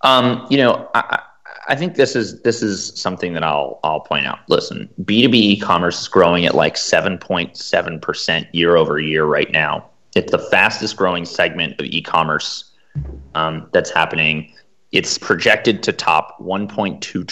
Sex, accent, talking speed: male, American, 150 wpm